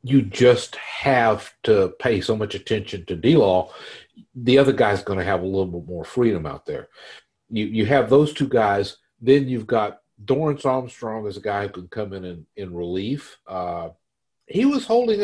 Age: 50-69